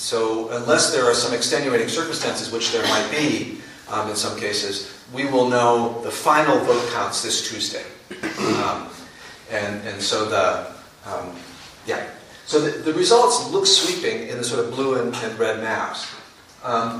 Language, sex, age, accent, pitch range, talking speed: English, male, 40-59, American, 115-145 Hz, 165 wpm